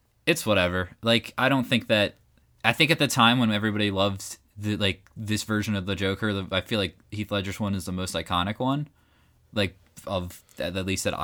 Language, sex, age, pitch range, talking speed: English, male, 20-39, 95-115 Hz, 210 wpm